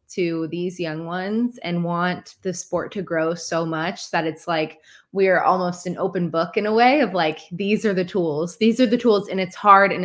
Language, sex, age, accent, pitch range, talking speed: English, female, 20-39, American, 170-210 Hz, 220 wpm